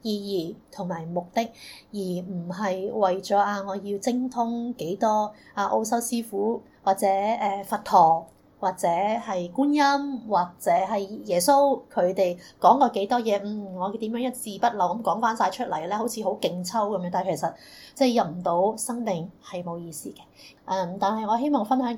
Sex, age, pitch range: female, 20-39, 190-250 Hz